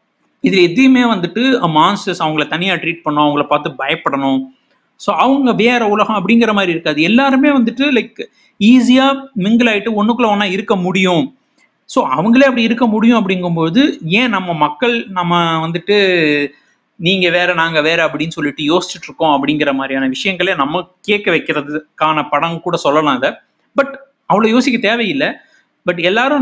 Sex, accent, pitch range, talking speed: male, native, 160-230 Hz, 145 wpm